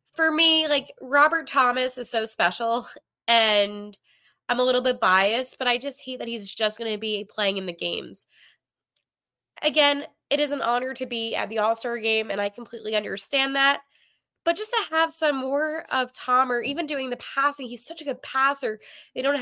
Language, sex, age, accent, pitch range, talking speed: English, female, 20-39, American, 210-275 Hz, 200 wpm